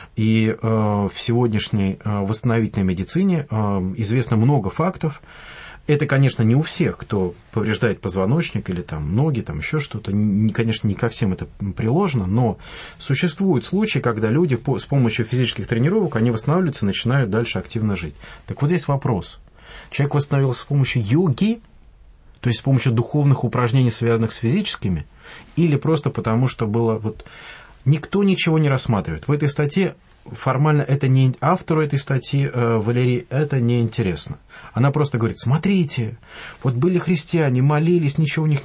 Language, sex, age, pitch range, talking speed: English, male, 30-49, 110-150 Hz, 155 wpm